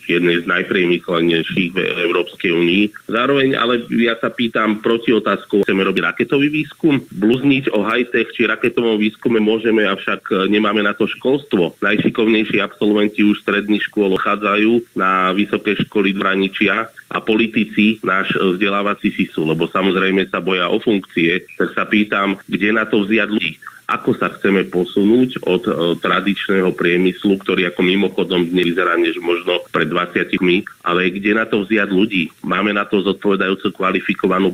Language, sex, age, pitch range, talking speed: Slovak, male, 30-49, 95-110 Hz, 150 wpm